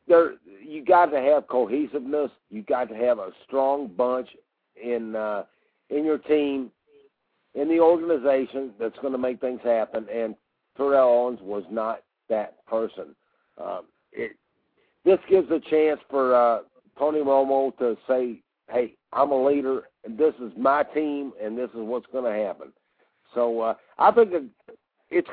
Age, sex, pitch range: 60-79, male, 125-165 Hz